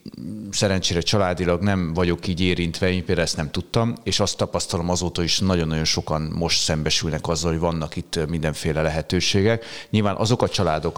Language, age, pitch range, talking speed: Hungarian, 30-49, 80-95 Hz, 165 wpm